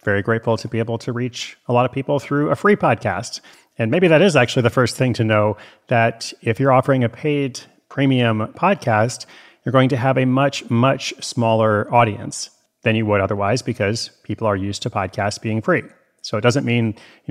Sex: male